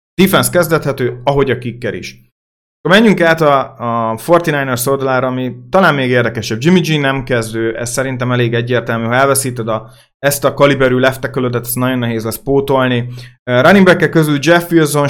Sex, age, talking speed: male, 30-49, 165 wpm